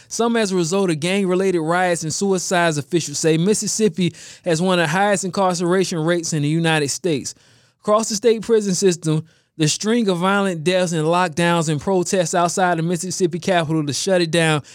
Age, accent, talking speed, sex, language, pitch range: 20-39, American, 185 wpm, male, English, 155-195 Hz